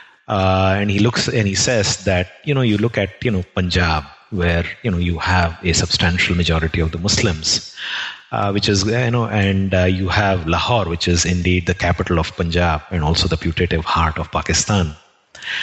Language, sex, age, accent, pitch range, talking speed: English, male, 30-49, Indian, 90-115 Hz, 195 wpm